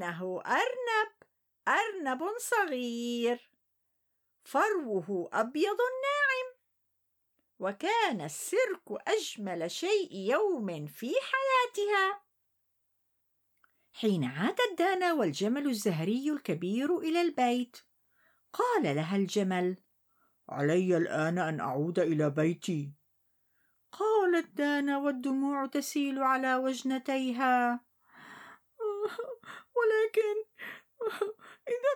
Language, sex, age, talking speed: Arabic, female, 50-69, 75 wpm